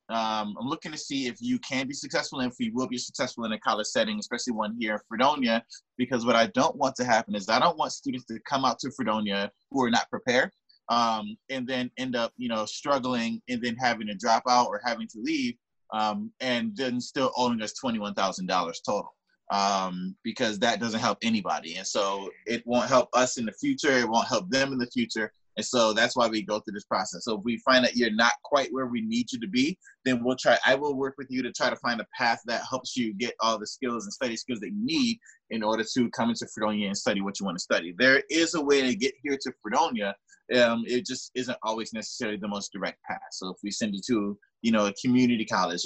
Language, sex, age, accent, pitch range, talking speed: English, male, 20-39, American, 105-130 Hz, 245 wpm